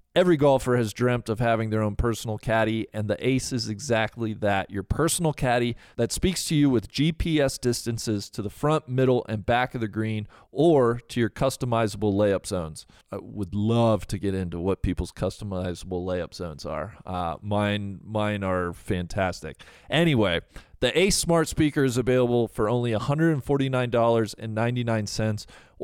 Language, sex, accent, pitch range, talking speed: English, male, American, 105-130 Hz, 160 wpm